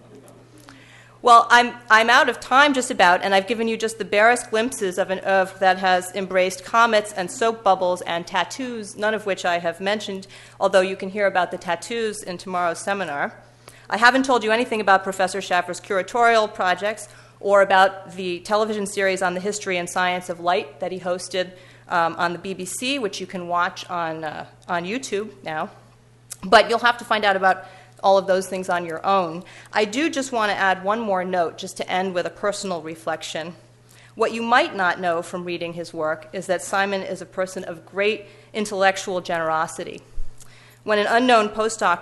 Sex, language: female, English